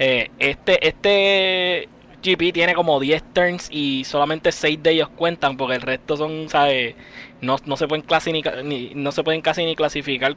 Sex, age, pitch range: male, 10-29, 135-170 Hz